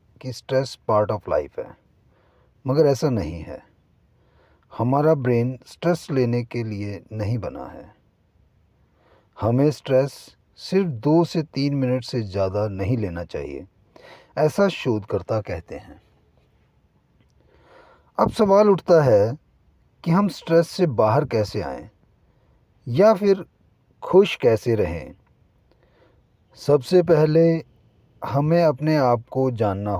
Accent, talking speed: native, 115 wpm